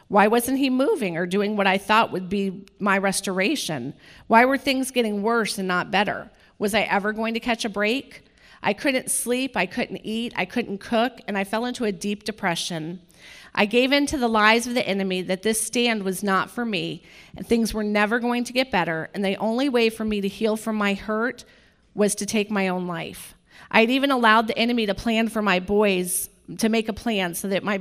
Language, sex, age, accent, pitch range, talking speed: English, female, 40-59, American, 190-230 Hz, 225 wpm